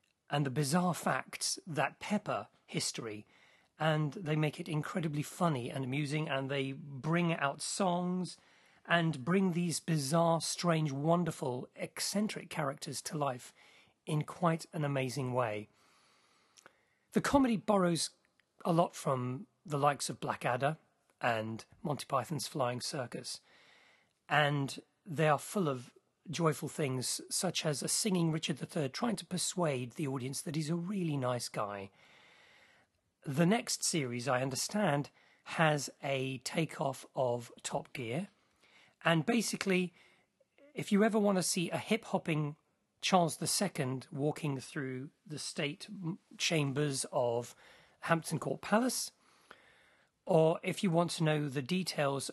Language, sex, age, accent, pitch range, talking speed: English, male, 40-59, British, 135-175 Hz, 130 wpm